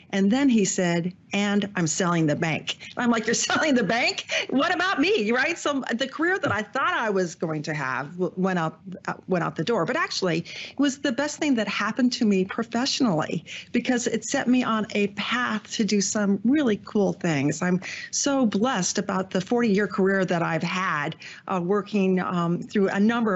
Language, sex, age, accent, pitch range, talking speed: English, female, 50-69, American, 175-220 Hz, 200 wpm